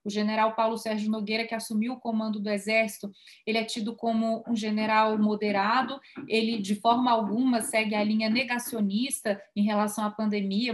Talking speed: 170 wpm